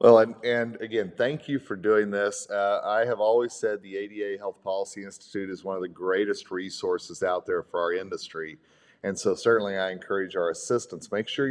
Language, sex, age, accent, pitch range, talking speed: English, male, 40-59, American, 100-135 Hz, 205 wpm